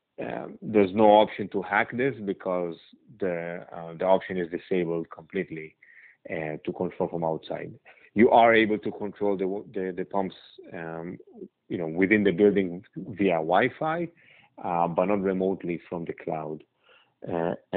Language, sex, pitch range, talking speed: English, male, 90-105 Hz, 150 wpm